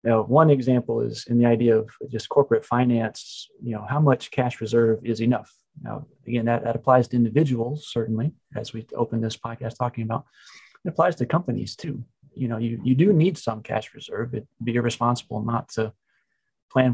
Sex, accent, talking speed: male, American, 190 wpm